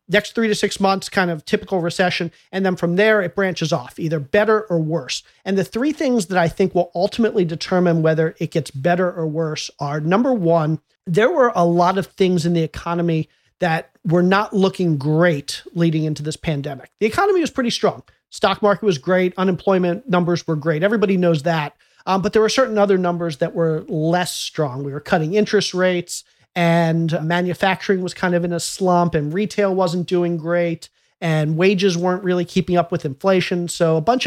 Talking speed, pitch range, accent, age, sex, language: 200 wpm, 165-195 Hz, American, 40-59, male, English